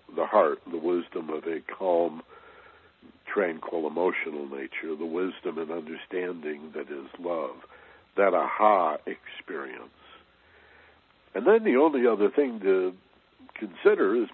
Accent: American